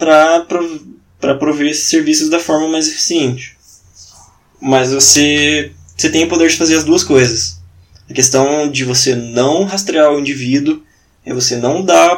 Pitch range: 130-170 Hz